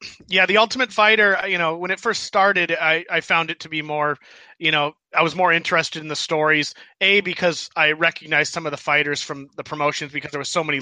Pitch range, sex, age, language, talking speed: 130-160 Hz, male, 30-49, English, 235 wpm